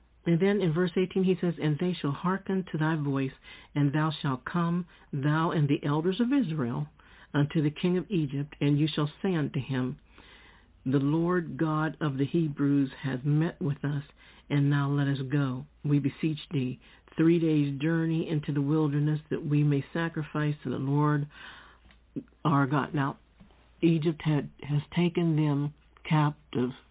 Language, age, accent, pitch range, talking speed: English, 60-79, American, 130-160 Hz, 165 wpm